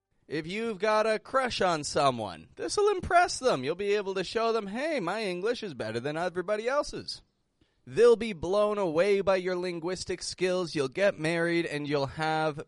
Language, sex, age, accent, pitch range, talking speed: English, male, 30-49, American, 145-210 Hz, 185 wpm